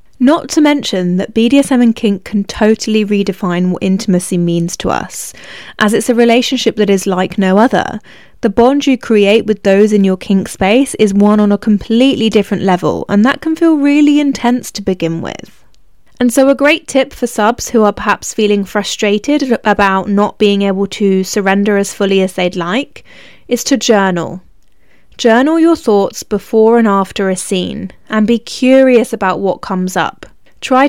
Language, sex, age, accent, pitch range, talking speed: English, female, 20-39, British, 195-240 Hz, 180 wpm